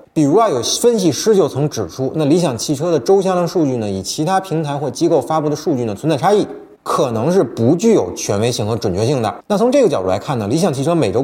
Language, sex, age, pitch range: Chinese, male, 30-49, 115-190 Hz